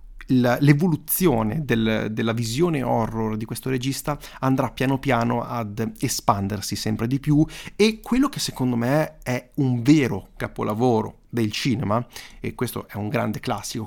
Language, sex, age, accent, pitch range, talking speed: Italian, male, 30-49, native, 115-150 Hz, 140 wpm